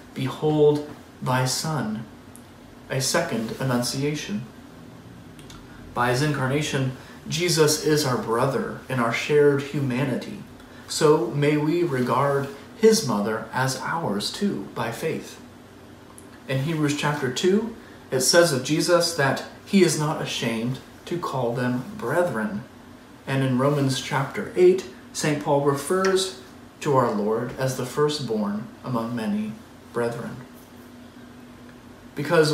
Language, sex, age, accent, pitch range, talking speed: English, male, 40-59, American, 125-150 Hz, 115 wpm